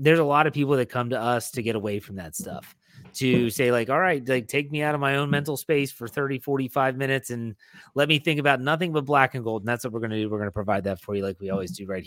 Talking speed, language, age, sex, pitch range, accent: 310 wpm, English, 30-49, male, 120-155 Hz, American